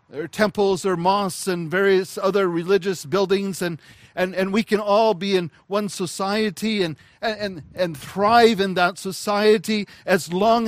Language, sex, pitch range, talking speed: English, male, 160-215 Hz, 155 wpm